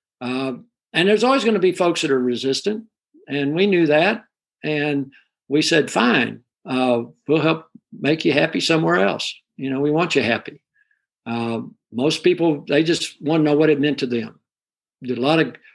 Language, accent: English, American